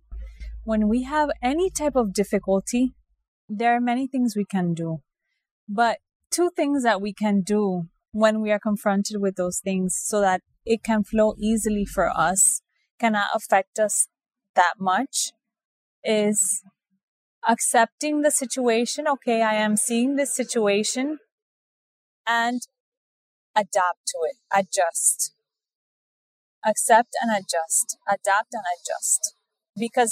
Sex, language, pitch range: female, English, 190-235 Hz